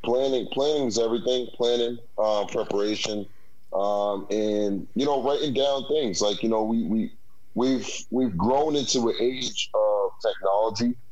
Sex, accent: male, American